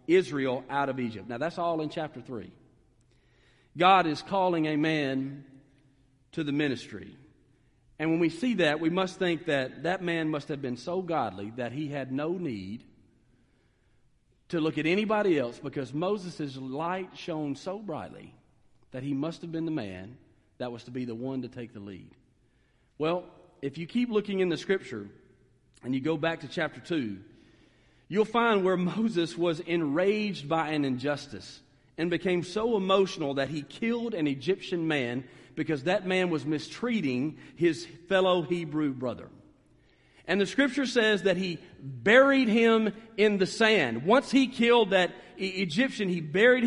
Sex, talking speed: male, 165 wpm